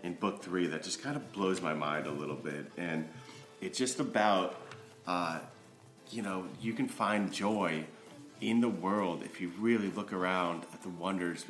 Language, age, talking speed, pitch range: English, 30-49, 185 wpm, 90-110 Hz